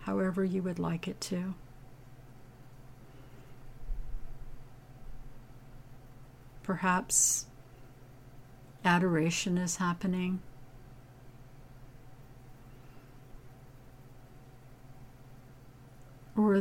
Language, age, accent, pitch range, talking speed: English, 60-79, American, 130-170 Hz, 40 wpm